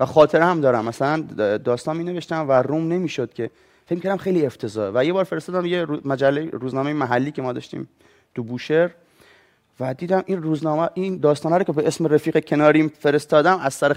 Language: Persian